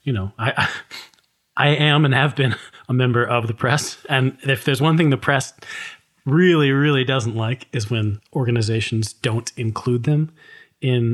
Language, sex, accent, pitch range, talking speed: English, male, American, 120-155 Hz, 165 wpm